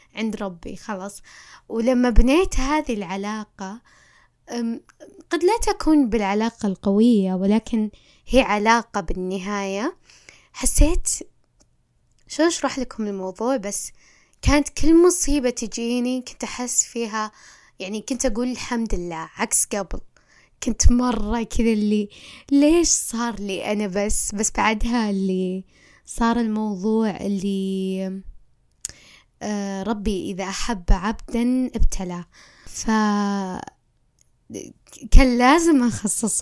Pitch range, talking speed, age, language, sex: 200-245 Hz, 95 wpm, 20-39, Arabic, female